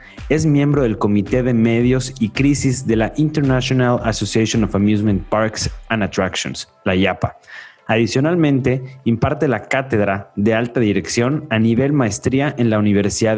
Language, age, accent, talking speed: Spanish, 30-49, Mexican, 145 wpm